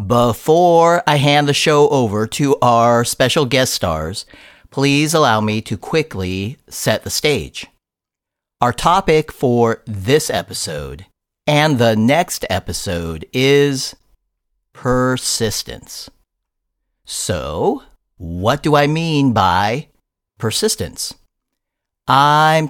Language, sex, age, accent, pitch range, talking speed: English, male, 50-69, American, 105-145 Hz, 100 wpm